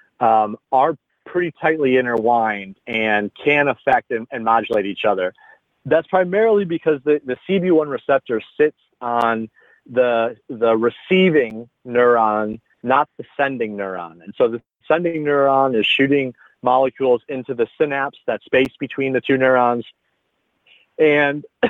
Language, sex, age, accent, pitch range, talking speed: English, male, 30-49, American, 115-150 Hz, 135 wpm